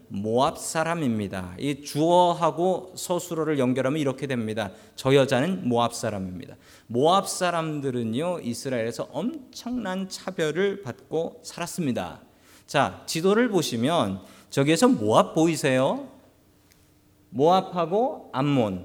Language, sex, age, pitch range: Korean, male, 40-59, 125-195 Hz